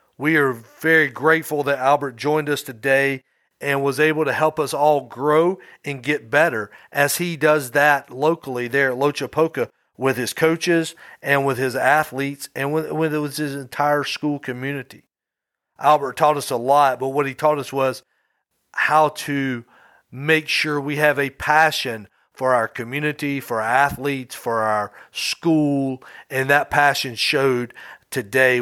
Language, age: English, 40-59